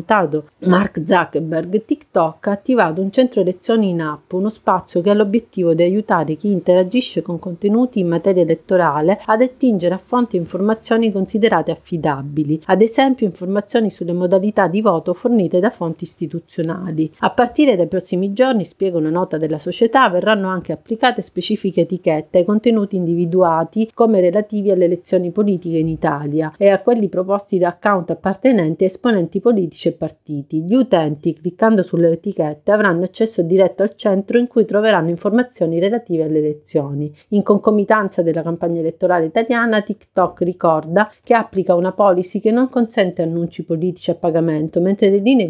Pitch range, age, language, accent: 170-215 Hz, 40-59, Italian, native